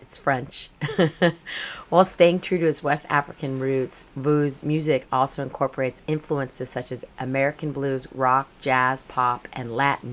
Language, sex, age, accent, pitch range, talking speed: English, female, 40-59, American, 130-155 Hz, 135 wpm